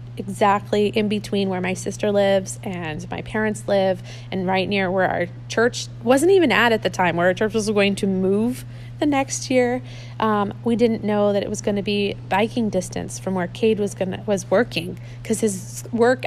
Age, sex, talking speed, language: 30-49, female, 205 wpm, English